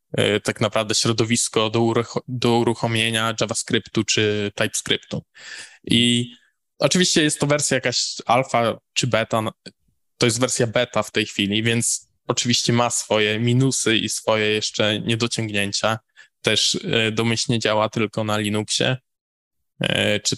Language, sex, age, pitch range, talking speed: Polish, male, 10-29, 110-125 Hz, 120 wpm